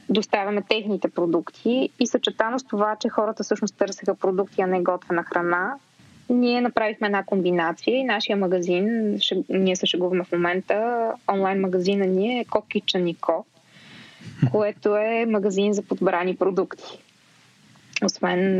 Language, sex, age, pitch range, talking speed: Bulgarian, female, 20-39, 190-230 Hz, 130 wpm